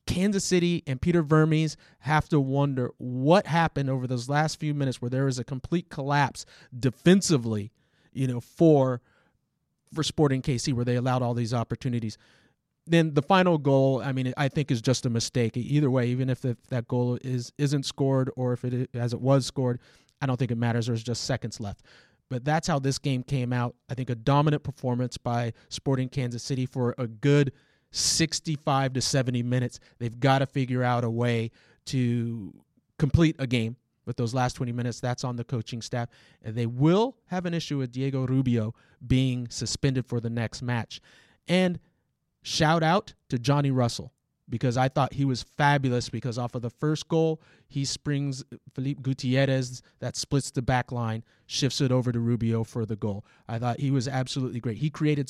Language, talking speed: English, 190 wpm